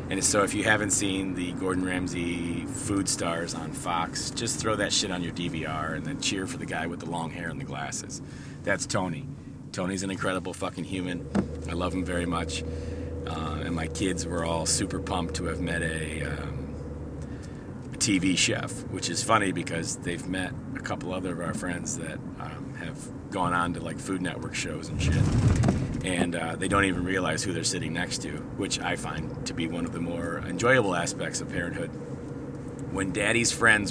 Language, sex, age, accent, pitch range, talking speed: English, male, 40-59, American, 85-105 Hz, 200 wpm